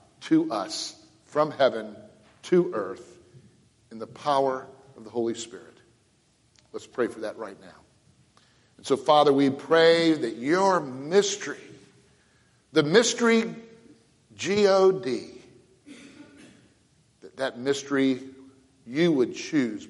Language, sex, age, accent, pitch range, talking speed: English, male, 50-69, American, 130-165 Hz, 110 wpm